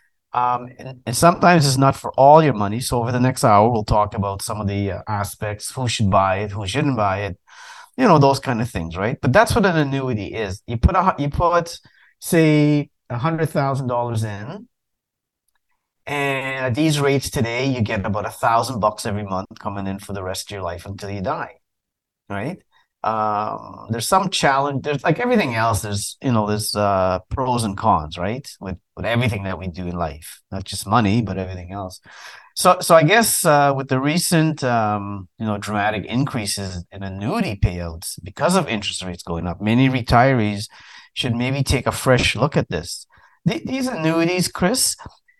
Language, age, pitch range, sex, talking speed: English, 30-49, 100-140 Hz, male, 195 wpm